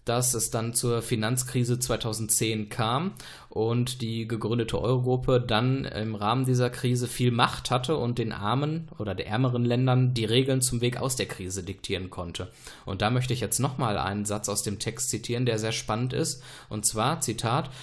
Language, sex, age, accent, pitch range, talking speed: German, male, 20-39, German, 110-130 Hz, 180 wpm